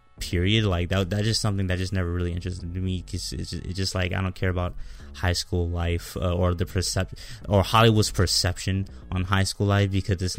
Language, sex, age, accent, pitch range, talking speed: English, male, 20-39, American, 85-100 Hz, 215 wpm